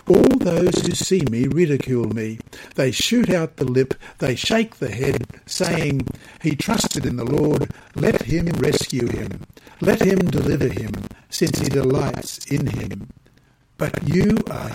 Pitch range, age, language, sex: 135-180 Hz, 60-79, English, male